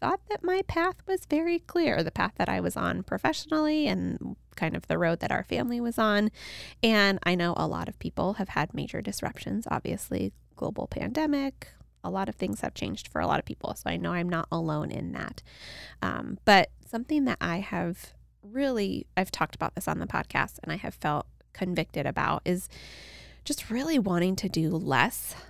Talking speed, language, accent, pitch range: 200 wpm, English, American, 165-260 Hz